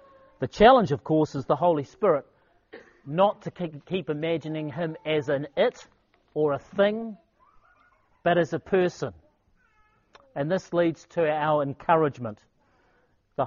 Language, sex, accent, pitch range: English, male, Australian, 145-180 Hz